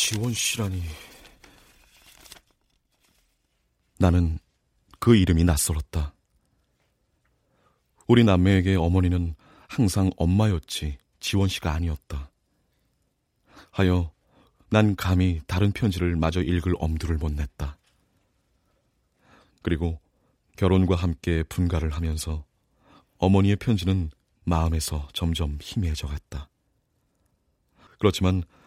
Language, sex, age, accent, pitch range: Korean, male, 30-49, native, 80-95 Hz